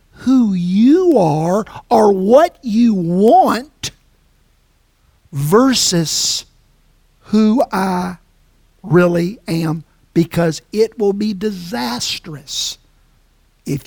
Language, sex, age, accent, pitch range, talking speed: English, male, 50-69, American, 155-205 Hz, 80 wpm